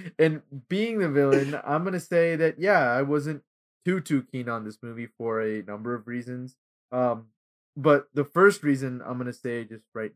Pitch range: 120-150 Hz